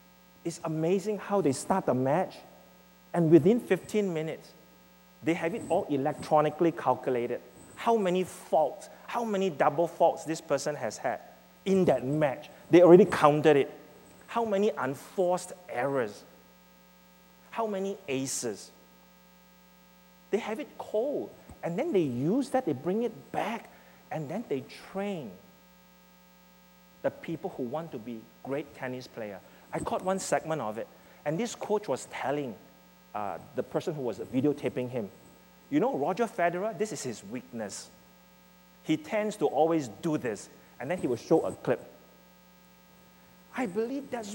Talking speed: 150 wpm